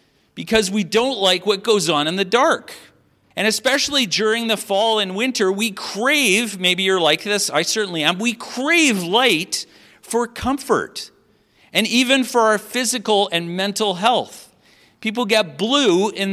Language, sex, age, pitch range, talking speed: English, male, 50-69, 185-245 Hz, 160 wpm